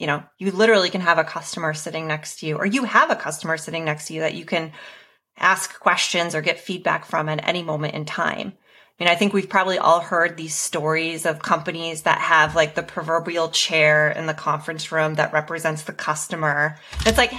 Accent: American